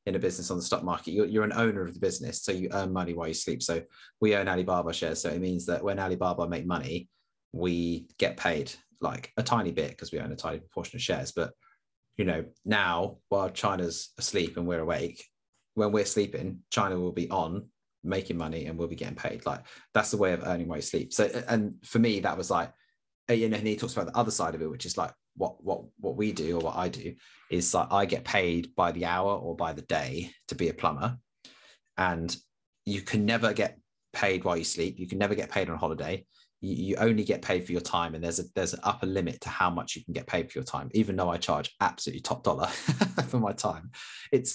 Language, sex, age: English, male, 30-49